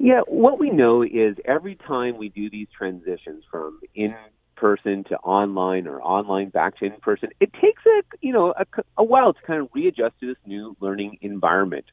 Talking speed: 195 wpm